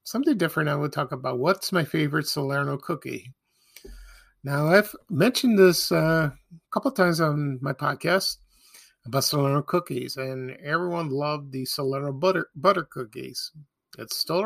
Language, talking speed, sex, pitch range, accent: English, 150 wpm, male, 130-160 Hz, American